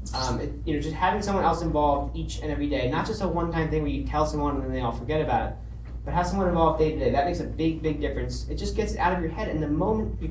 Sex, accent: male, American